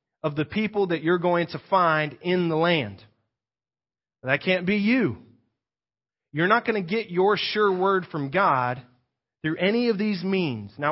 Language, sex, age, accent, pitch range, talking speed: English, male, 30-49, American, 140-195 Hz, 170 wpm